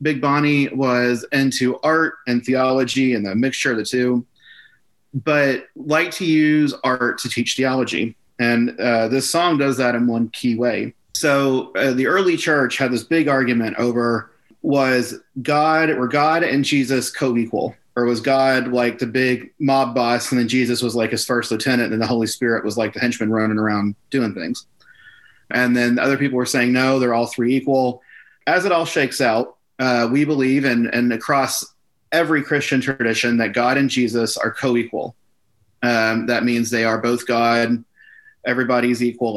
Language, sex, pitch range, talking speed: English, male, 120-140 Hz, 175 wpm